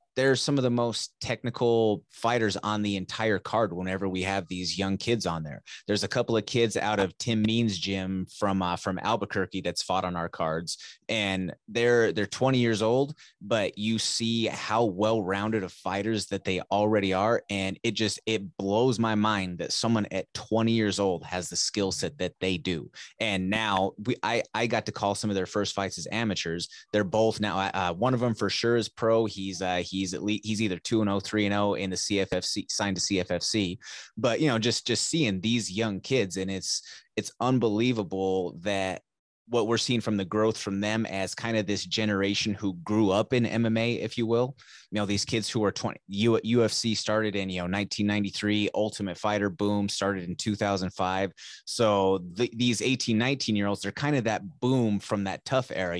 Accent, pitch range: American, 95-115 Hz